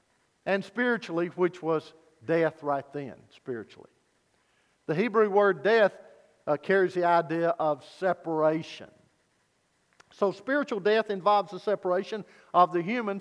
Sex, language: male, English